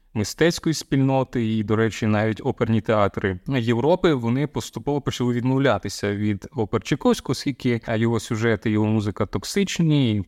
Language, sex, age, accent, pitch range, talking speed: Ukrainian, male, 20-39, native, 110-130 Hz, 140 wpm